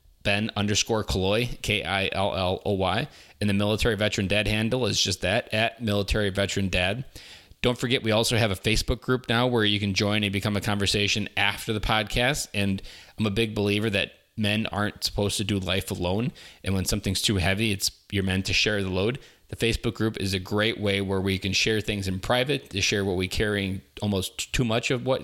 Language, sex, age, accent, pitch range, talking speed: English, male, 30-49, American, 95-110 Hz, 205 wpm